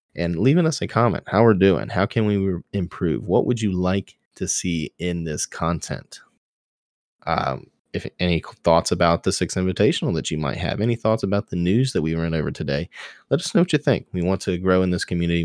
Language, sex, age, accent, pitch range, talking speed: English, male, 20-39, American, 85-100 Hz, 220 wpm